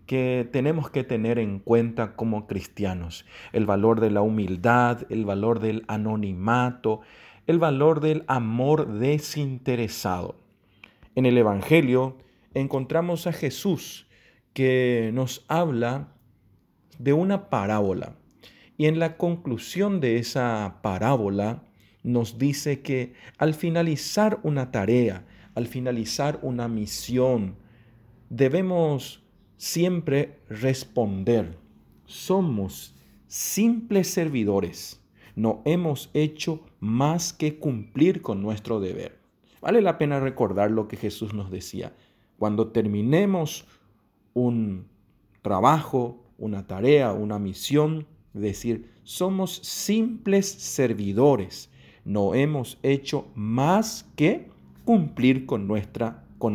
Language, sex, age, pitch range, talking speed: English, male, 40-59, 105-150 Hz, 100 wpm